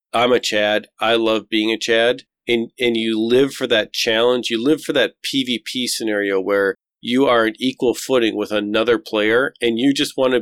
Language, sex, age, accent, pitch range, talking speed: English, male, 40-59, American, 105-130 Hz, 195 wpm